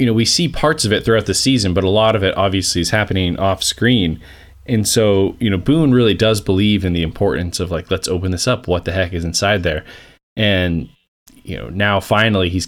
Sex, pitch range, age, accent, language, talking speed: male, 85-115 Hz, 20-39, American, English, 230 wpm